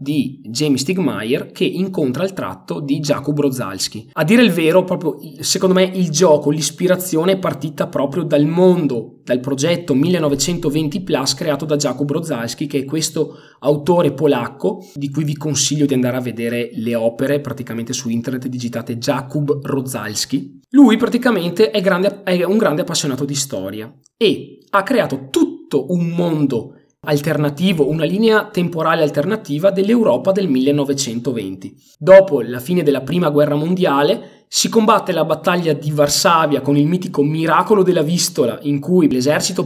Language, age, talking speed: Italian, 20-39, 150 wpm